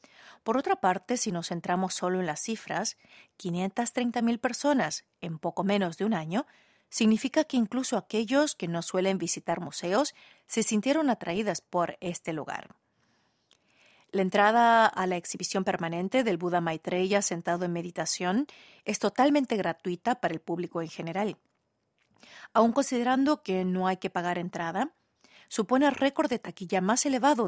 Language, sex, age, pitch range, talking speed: Spanish, female, 40-59, 175-225 Hz, 150 wpm